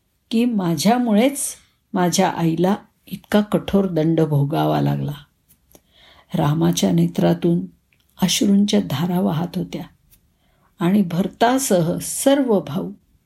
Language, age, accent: Marathi, 50-69, native